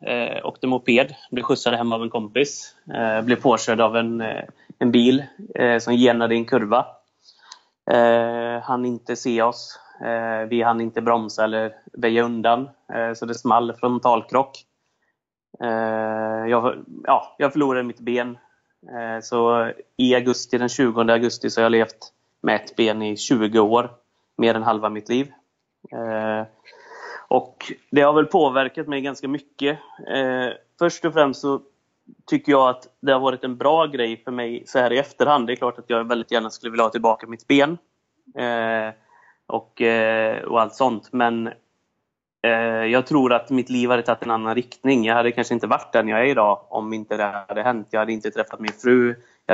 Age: 30-49